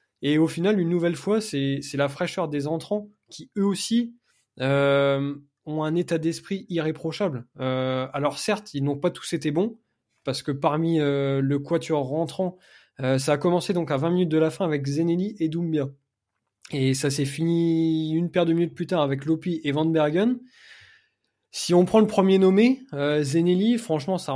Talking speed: 185 wpm